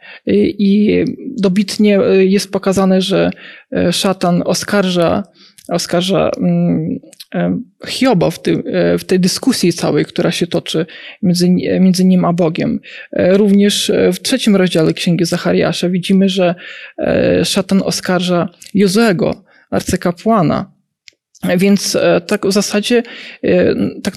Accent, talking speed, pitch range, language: native, 100 wpm, 180-210 Hz, Polish